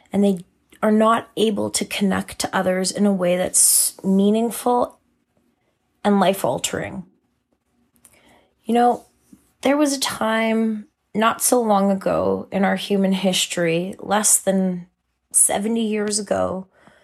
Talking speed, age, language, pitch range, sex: 125 wpm, 30-49, English, 185-220 Hz, female